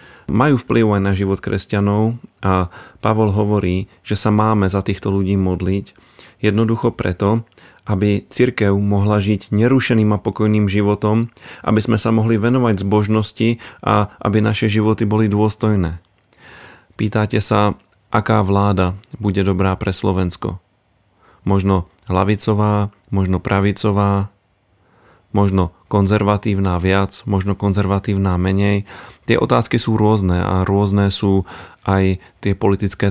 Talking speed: 120 wpm